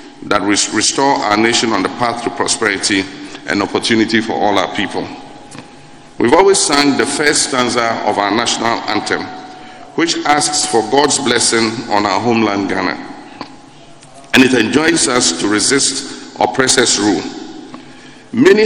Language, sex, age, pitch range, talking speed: English, male, 50-69, 115-150 Hz, 140 wpm